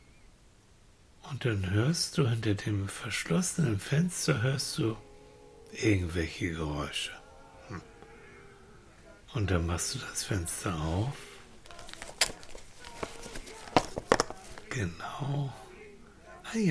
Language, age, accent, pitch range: German, 60-79, German, 90-135 Hz